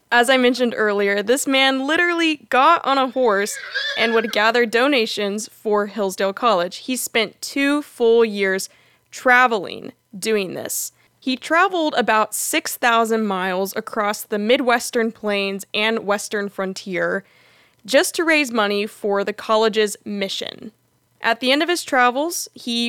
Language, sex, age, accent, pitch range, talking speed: English, female, 20-39, American, 205-255 Hz, 140 wpm